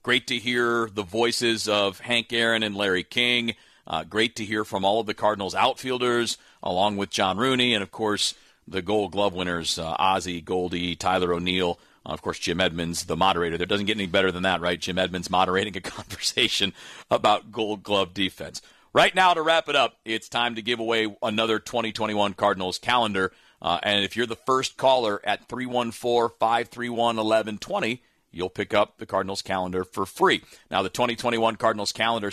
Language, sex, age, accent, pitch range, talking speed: English, male, 40-59, American, 95-120 Hz, 180 wpm